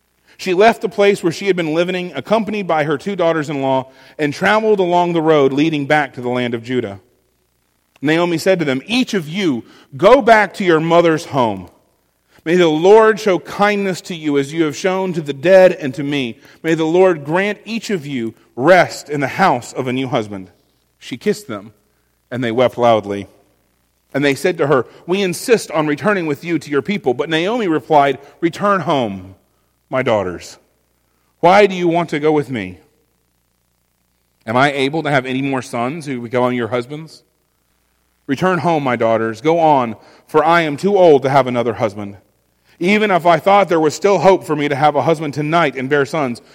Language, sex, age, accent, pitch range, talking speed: English, male, 40-59, American, 120-170 Hz, 195 wpm